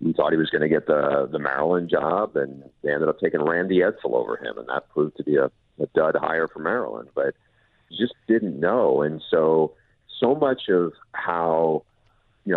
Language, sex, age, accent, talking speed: English, male, 50-69, American, 200 wpm